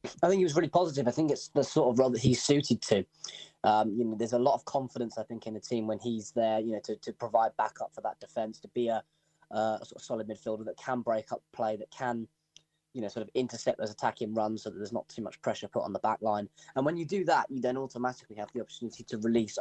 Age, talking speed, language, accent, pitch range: 20-39, 280 wpm, English, British, 110-135 Hz